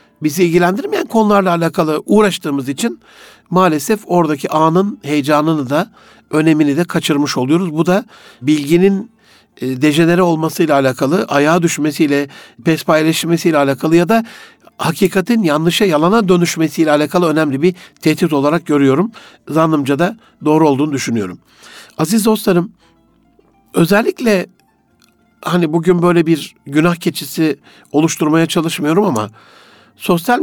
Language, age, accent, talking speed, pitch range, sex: Turkish, 60-79, native, 110 wpm, 150-195 Hz, male